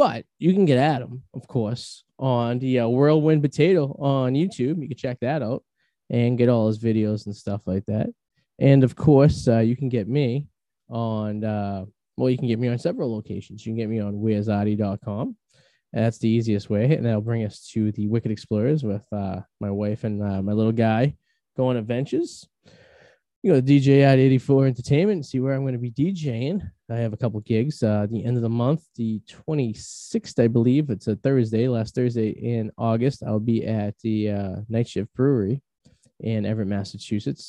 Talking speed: 195 wpm